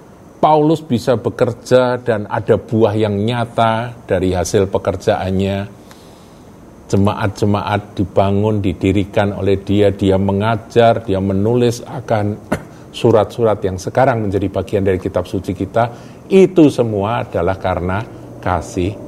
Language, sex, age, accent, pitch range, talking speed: Indonesian, male, 50-69, native, 100-125 Hz, 110 wpm